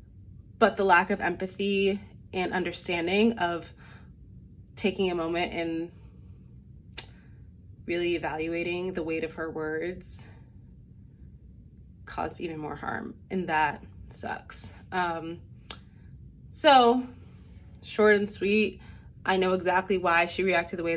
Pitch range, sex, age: 165-195 Hz, female, 20-39